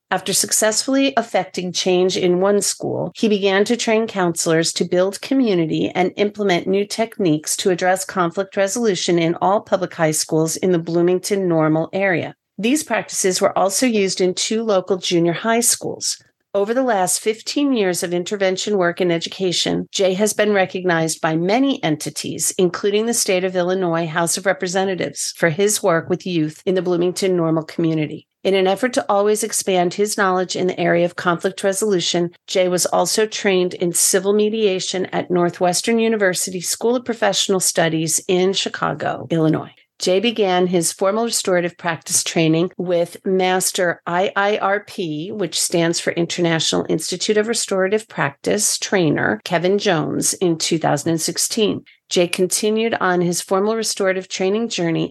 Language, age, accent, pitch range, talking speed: English, 50-69, American, 175-205 Hz, 155 wpm